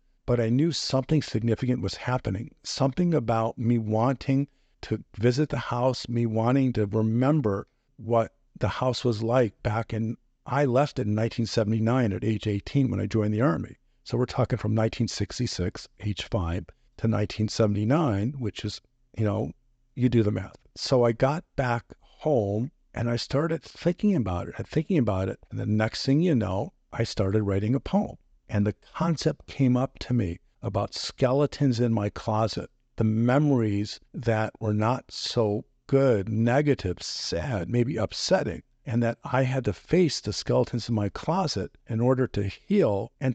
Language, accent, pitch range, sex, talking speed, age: English, American, 110-130 Hz, male, 170 wpm, 50-69